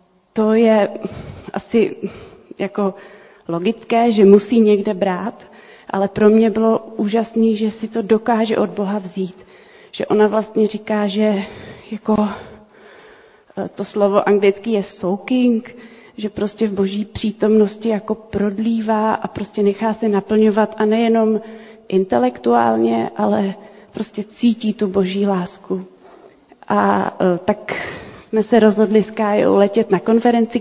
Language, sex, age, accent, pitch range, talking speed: Czech, female, 30-49, native, 200-230 Hz, 125 wpm